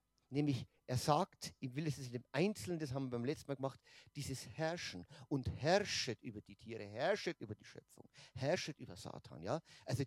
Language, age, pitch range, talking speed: German, 50-69, 125-180 Hz, 195 wpm